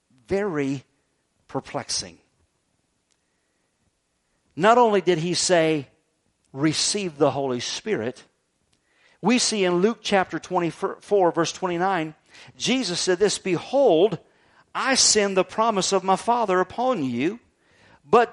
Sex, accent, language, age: male, American, English, 50-69